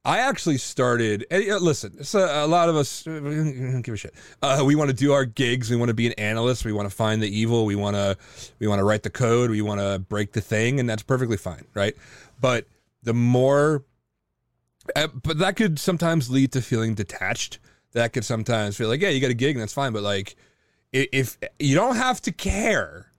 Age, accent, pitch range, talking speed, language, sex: 30-49, American, 105-140 Hz, 220 wpm, English, male